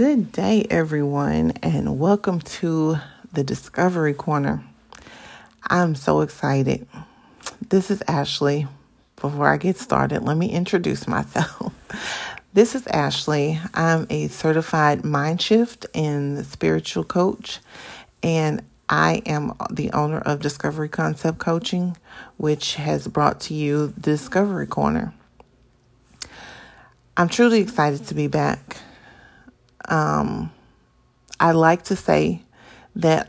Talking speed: 115 wpm